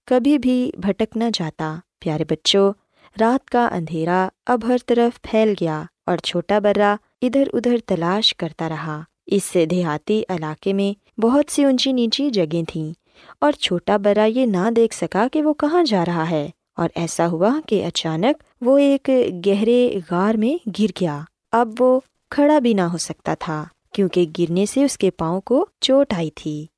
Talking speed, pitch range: 170 wpm, 175-250 Hz